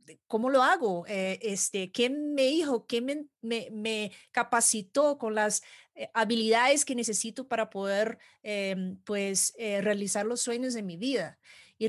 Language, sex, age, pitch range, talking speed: Spanish, female, 30-49, 195-245 Hz, 150 wpm